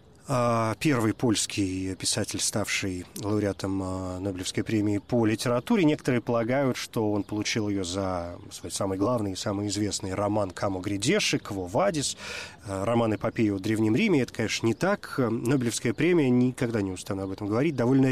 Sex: male